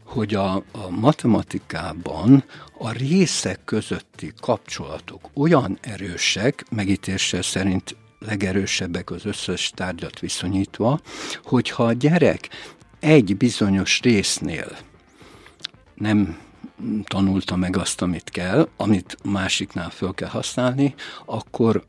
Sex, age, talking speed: male, 60-79, 95 wpm